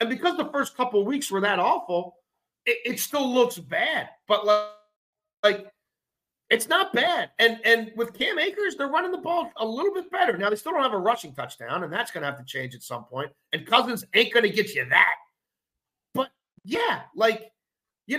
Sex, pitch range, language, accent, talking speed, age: male, 175-250 Hz, English, American, 210 wpm, 50-69